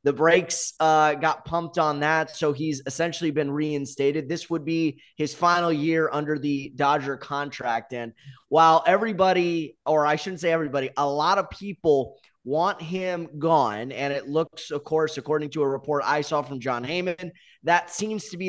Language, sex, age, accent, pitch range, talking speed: English, male, 20-39, American, 145-180 Hz, 175 wpm